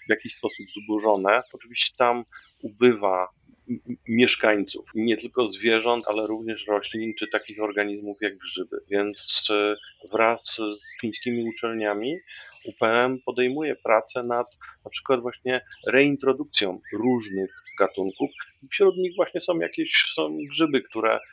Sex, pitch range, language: male, 110-130 Hz, Polish